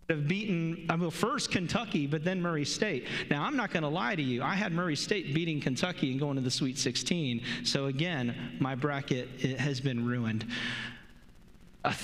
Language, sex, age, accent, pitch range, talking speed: English, male, 40-59, American, 135-180 Hz, 185 wpm